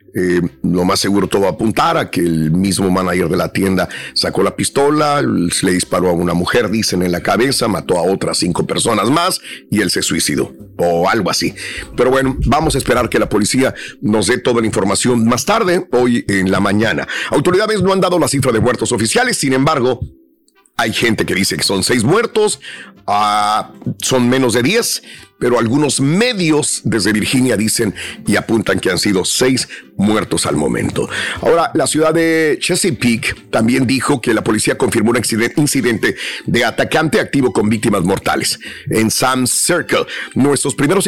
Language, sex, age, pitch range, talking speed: Spanish, male, 50-69, 100-140 Hz, 175 wpm